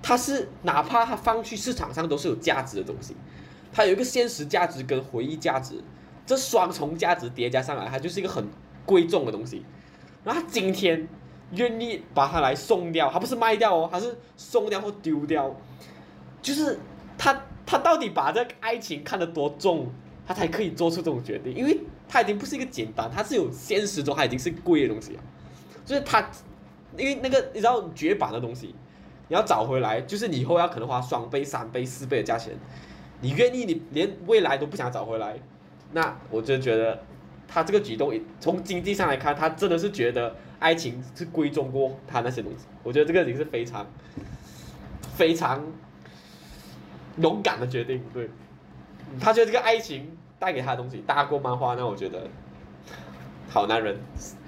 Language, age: Chinese, 10-29